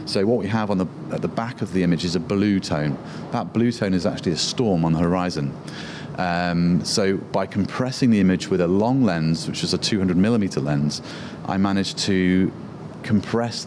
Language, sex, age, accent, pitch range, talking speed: English, male, 30-49, British, 90-115 Hz, 200 wpm